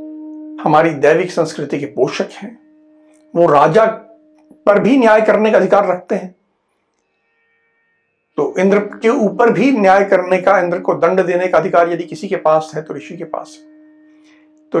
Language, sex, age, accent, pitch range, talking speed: Hindi, male, 60-79, native, 180-305 Hz, 165 wpm